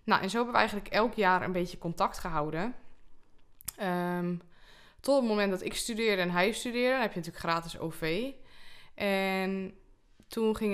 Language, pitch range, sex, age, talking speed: Dutch, 175-210 Hz, female, 20-39, 170 wpm